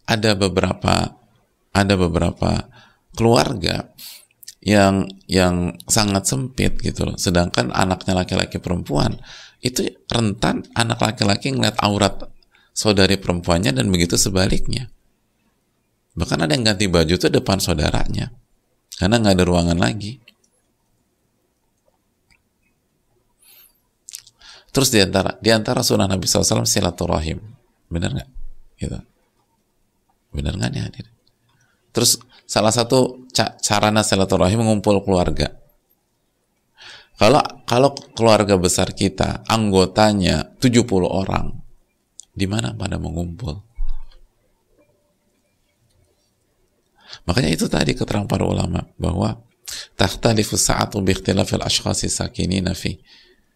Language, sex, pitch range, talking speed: English, male, 95-115 Hz, 90 wpm